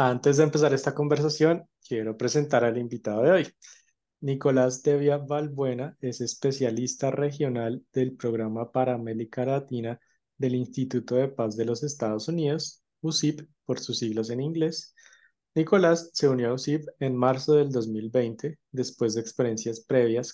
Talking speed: 145 wpm